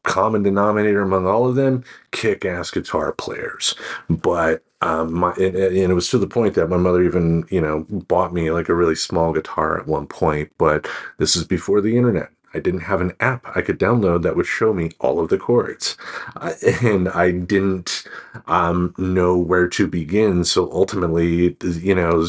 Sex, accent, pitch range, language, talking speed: male, American, 85-100 Hz, English, 185 wpm